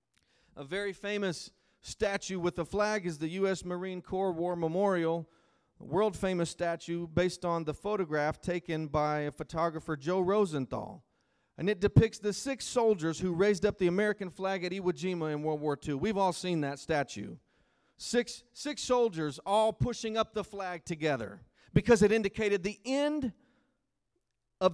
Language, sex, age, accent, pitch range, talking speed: English, male, 40-59, American, 170-220 Hz, 160 wpm